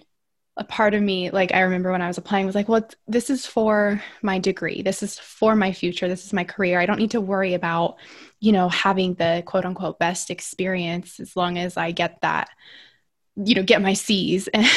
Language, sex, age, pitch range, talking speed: English, female, 20-39, 185-225 Hz, 220 wpm